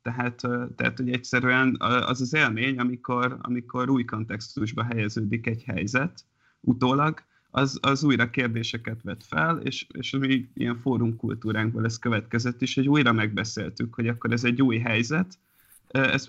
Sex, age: male, 30-49